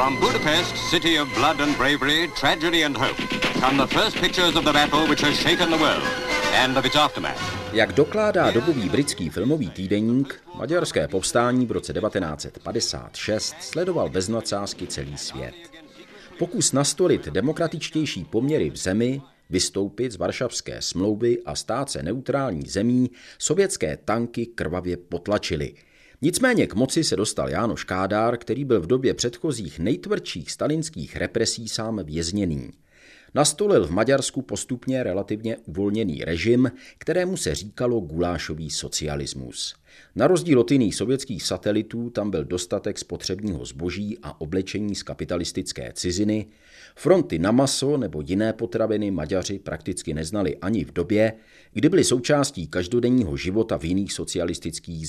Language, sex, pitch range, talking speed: Czech, male, 90-130 Hz, 110 wpm